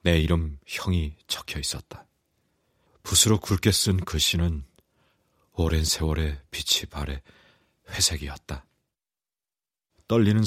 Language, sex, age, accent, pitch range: Korean, male, 40-59, native, 75-90 Hz